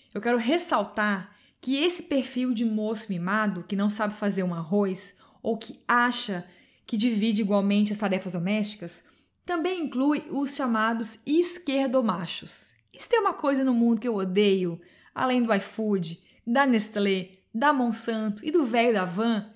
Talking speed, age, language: 160 wpm, 20-39, Portuguese